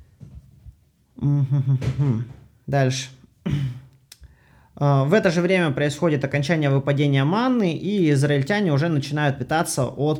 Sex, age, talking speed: male, 20-39, 100 wpm